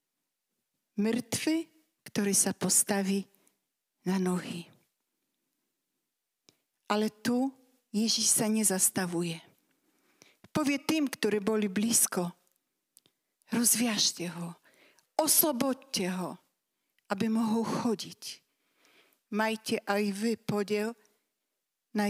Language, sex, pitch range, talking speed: Slovak, female, 195-255 Hz, 75 wpm